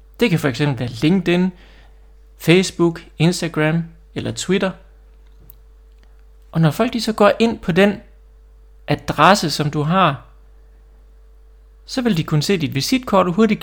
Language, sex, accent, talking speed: Danish, male, native, 135 wpm